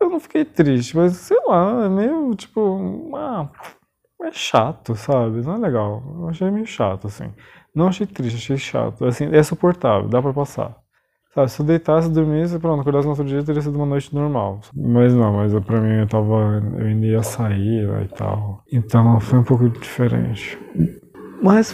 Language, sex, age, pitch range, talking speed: Portuguese, male, 20-39, 115-160 Hz, 180 wpm